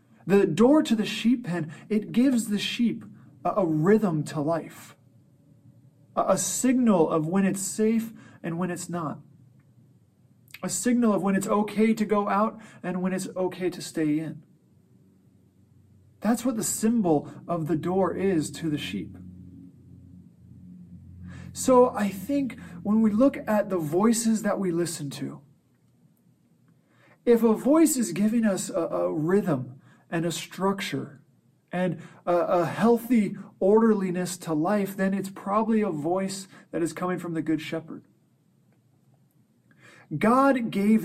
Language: English